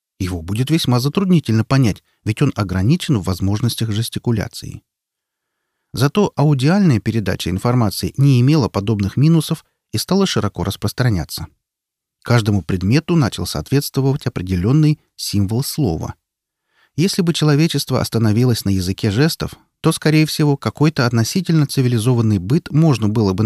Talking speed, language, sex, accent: 120 wpm, Russian, male, native